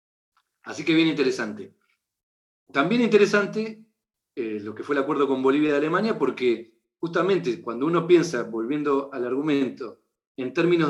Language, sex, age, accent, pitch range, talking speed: Portuguese, male, 40-59, Argentinian, 125-165 Hz, 145 wpm